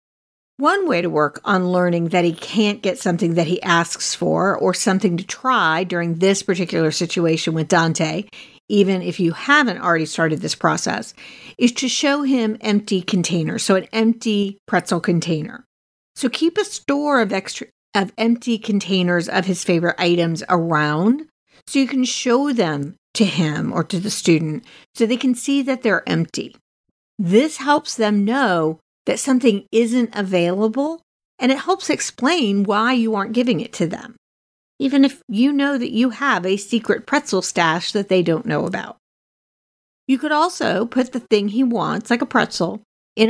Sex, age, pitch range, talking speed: female, 50-69, 180-255 Hz, 170 wpm